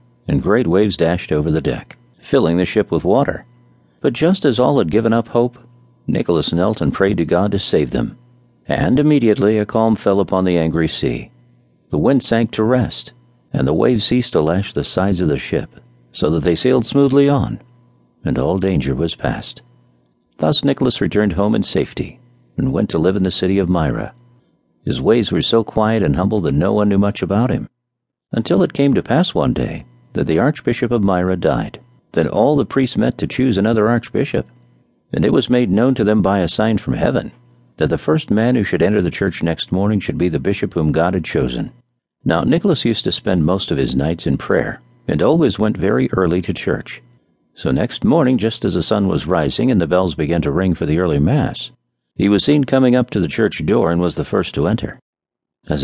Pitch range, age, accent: 85-120 Hz, 50-69, American